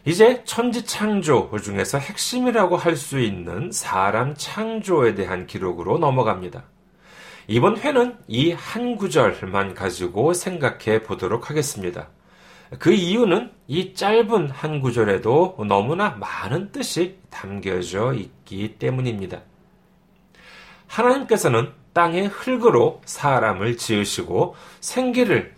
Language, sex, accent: Korean, male, native